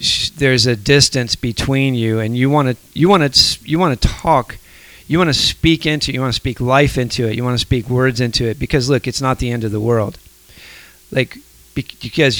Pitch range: 115-135 Hz